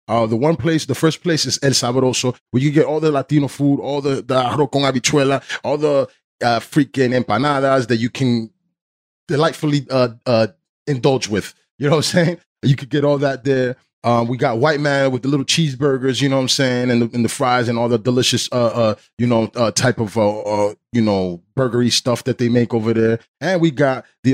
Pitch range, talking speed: 120-150 Hz, 230 wpm